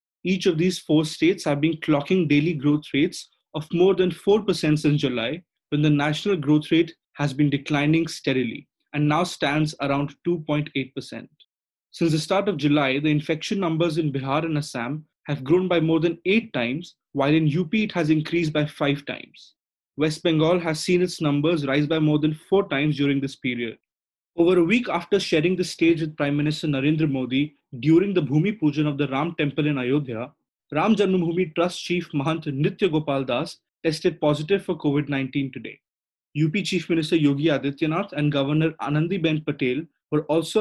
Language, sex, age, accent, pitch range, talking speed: English, male, 20-39, Indian, 145-170 Hz, 180 wpm